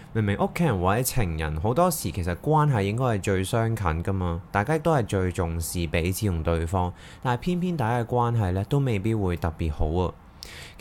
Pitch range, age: 90-120 Hz, 20-39